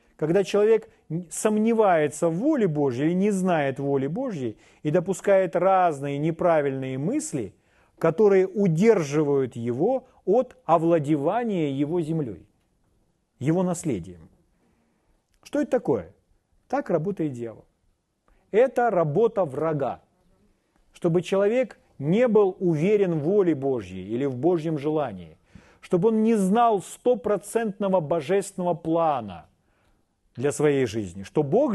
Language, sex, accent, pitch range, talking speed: Russian, male, native, 140-200 Hz, 110 wpm